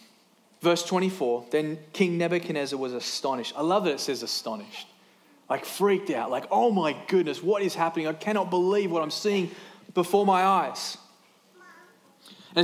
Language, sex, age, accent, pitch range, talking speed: English, male, 20-39, Australian, 140-185 Hz, 155 wpm